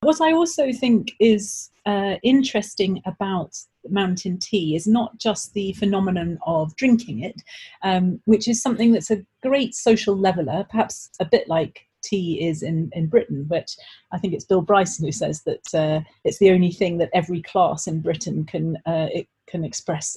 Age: 40-59